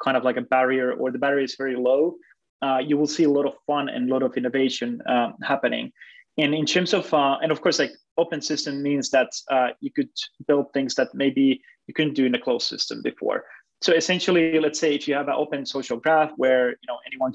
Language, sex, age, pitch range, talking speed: English, male, 20-39, 125-150 Hz, 240 wpm